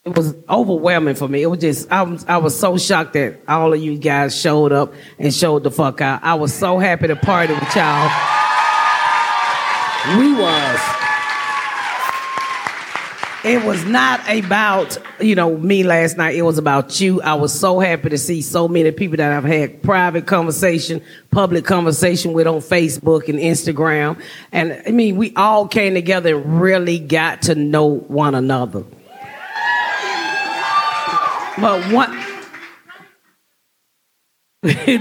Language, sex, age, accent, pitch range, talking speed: English, female, 30-49, American, 155-205 Hz, 145 wpm